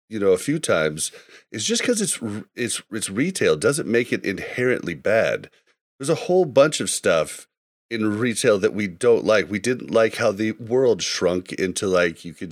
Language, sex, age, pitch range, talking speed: English, male, 30-49, 105-160 Hz, 190 wpm